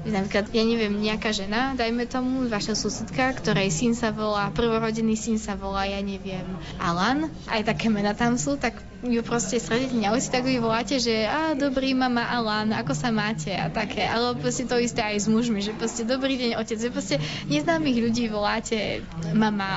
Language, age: Slovak, 20-39